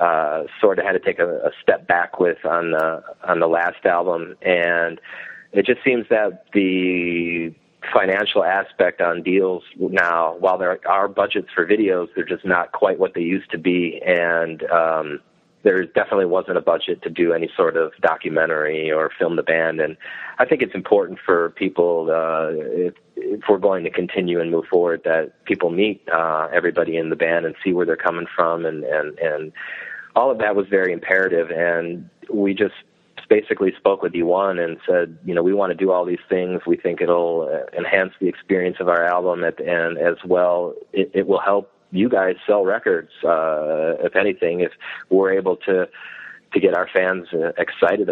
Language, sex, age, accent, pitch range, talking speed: English, male, 30-49, American, 85-100 Hz, 190 wpm